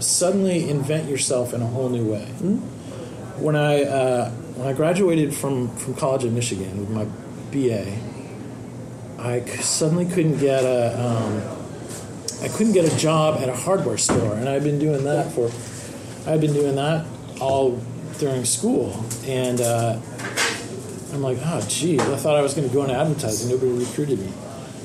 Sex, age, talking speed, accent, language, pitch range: male, 40-59, 165 wpm, American, English, 120-145 Hz